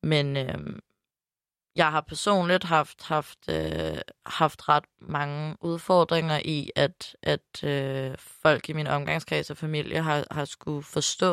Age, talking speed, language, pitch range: 20-39, 140 wpm, Danish, 145-165 Hz